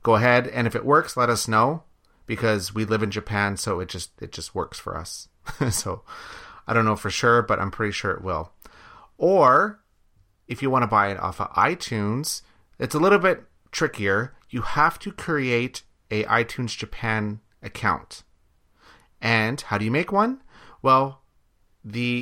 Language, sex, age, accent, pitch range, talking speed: English, male, 30-49, American, 100-120 Hz, 175 wpm